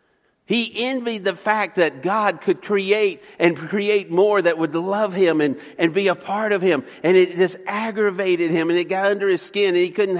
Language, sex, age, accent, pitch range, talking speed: English, male, 50-69, American, 170-205 Hz, 210 wpm